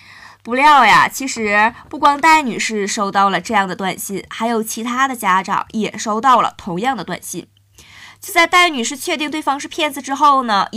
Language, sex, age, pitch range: Chinese, female, 20-39, 195-240 Hz